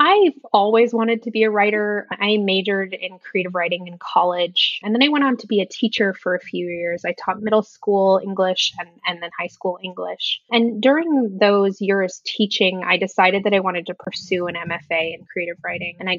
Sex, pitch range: female, 180-220 Hz